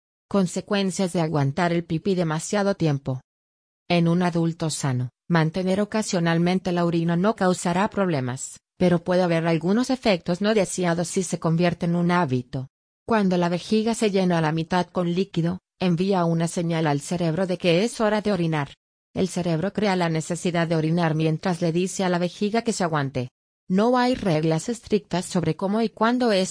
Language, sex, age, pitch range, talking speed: English, female, 30-49, 160-190 Hz, 175 wpm